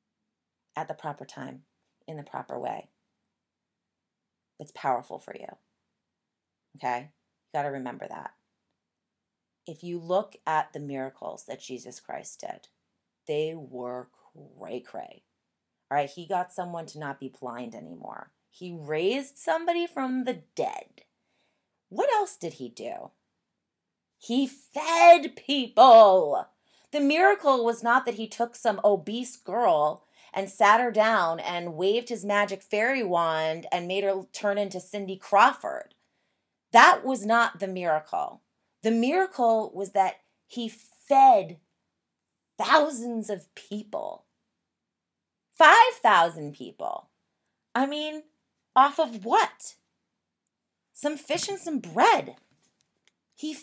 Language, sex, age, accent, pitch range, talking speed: English, female, 30-49, American, 160-255 Hz, 120 wpm